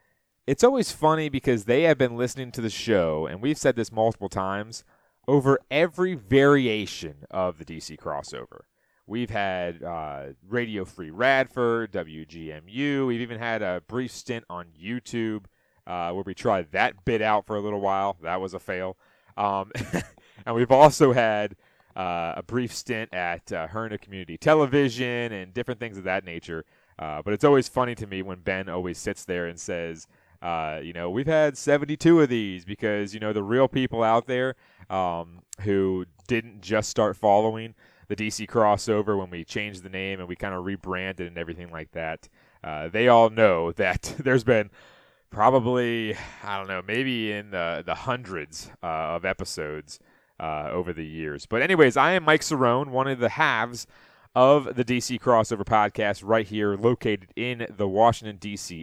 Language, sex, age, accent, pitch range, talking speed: English, male, 30-49, American, 90-125 Hz, 175 wpm